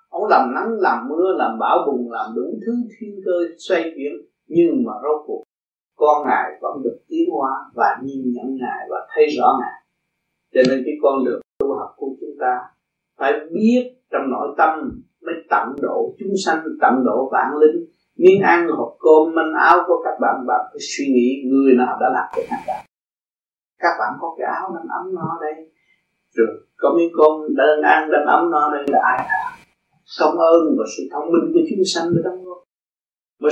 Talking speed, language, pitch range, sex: 200 wpm, Vietnamese, 165-250 Hz, male